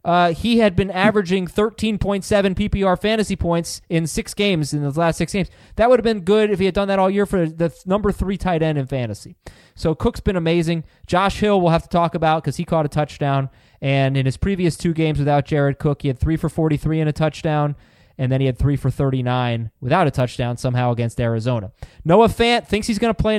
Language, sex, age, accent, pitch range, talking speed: English, male, 20-39, American, 130-185 Hz, 230 wpm